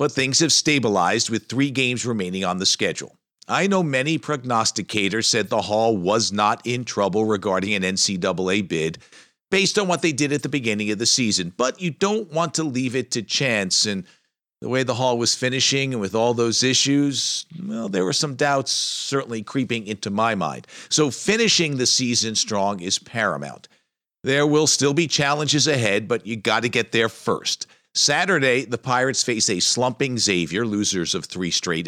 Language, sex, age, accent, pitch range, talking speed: English, male, 50-69, American, 105-145 Hz, 185 wpm